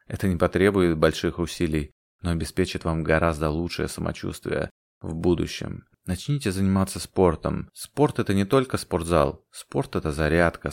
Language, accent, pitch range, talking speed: Russian, native, 80-95 Hz, 135 wpm